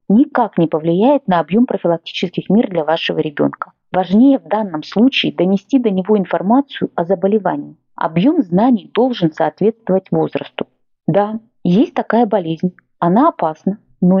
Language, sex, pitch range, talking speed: Russian, female, 175-245 Hz, 135 wpm